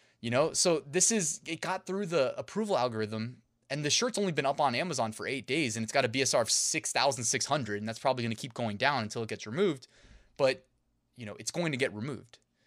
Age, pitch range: 20-39, 115-150 Hz